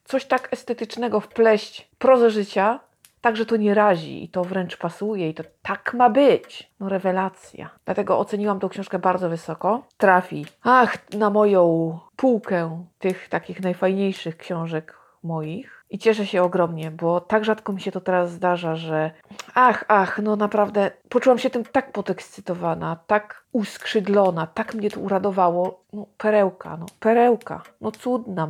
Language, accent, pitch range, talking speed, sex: Polish, native, 175-225 Hz, 150 wpm, female